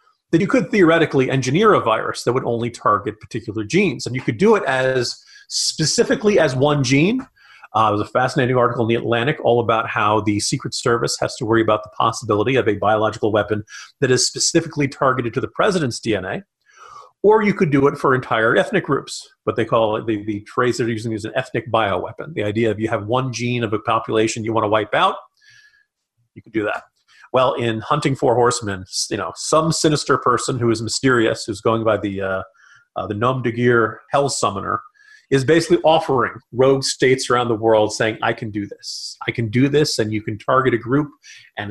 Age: 40-59